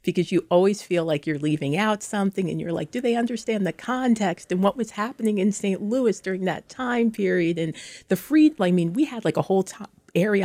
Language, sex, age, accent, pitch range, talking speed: English, female, 40-59, American, 155-205 Hz, 230 wpm